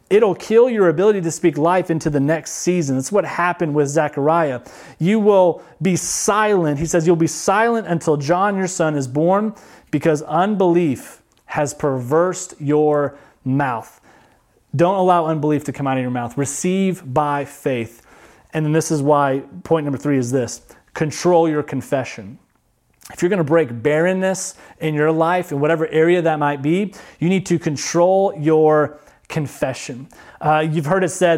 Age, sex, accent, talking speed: 30-49, male, American, 170 wpm